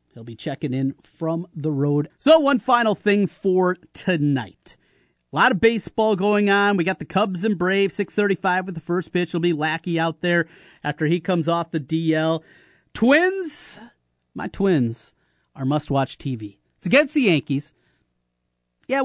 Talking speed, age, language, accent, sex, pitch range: 165 wpm, 30-49, English, American, male, 145-210 Hz